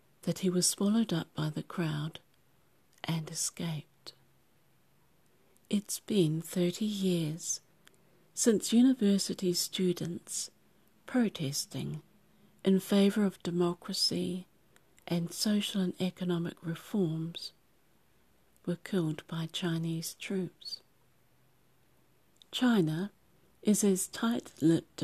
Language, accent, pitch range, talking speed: English, British, 165-195 Hz, 85 wpm